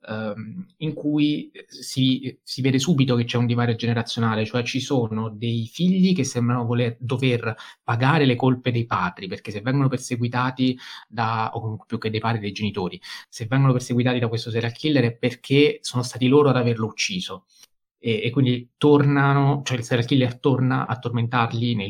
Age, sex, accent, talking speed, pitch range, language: 20-39, male, native, 180 wpm, 115-130 Hz, Italian